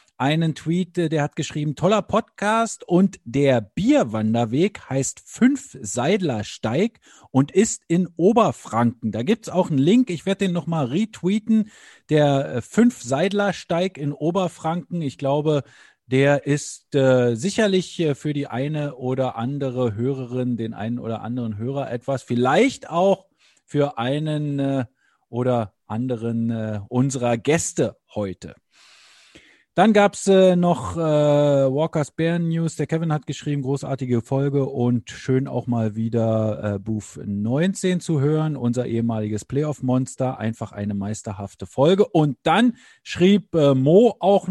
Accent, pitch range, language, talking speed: German, 125-170 Hz, English, 130 wpm